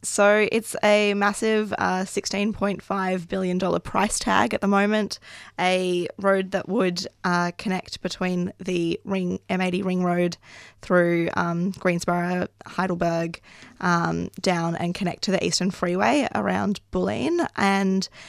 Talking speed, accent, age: 125 wpm, Australian, 20-39